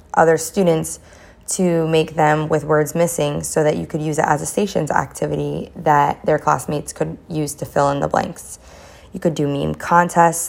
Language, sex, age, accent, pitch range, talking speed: English, female, 20-39, American, 150-170 Hz, 190 wpm